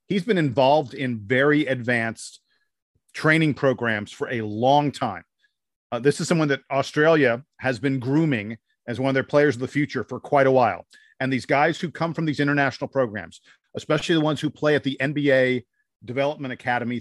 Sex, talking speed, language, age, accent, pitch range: male, 185 wpm, English, 40-59, American, 120-150 Hz